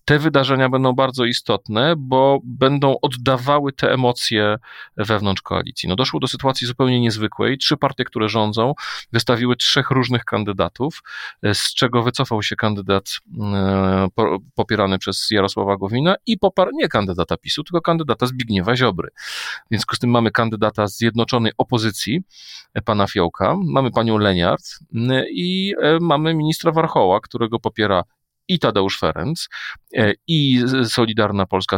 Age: 40-59